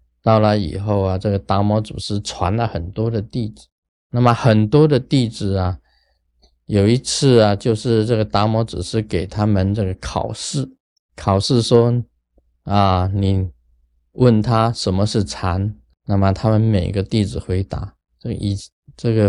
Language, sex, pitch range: Chinese, male, 95-120 Hz